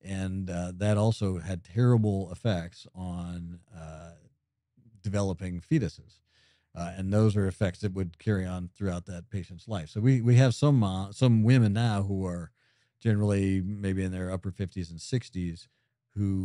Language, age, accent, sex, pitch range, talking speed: English, 50-69, American, male, 90-115 Hz, 160 wpm